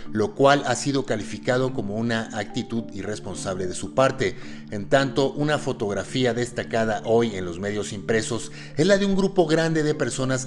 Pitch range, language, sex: 105-130 Hz, Spanish, male